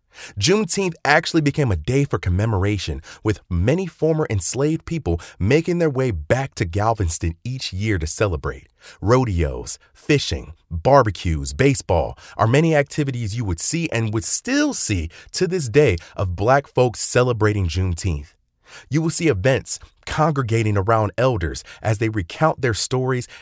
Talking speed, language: 145 wpm, English